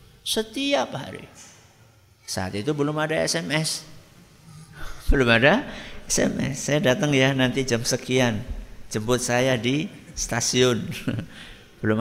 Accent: native